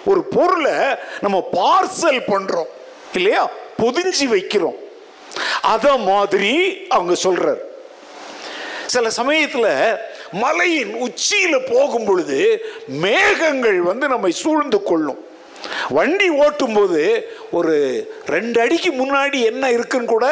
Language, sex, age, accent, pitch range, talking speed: Tamil, male, 50-69, native, 235-385 Hz, 90 wpm